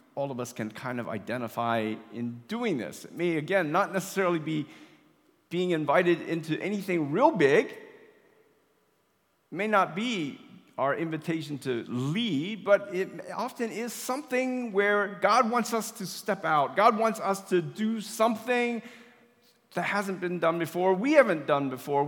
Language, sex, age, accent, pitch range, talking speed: English, male, 50-69, American, 145-215 Hz, 155 wpm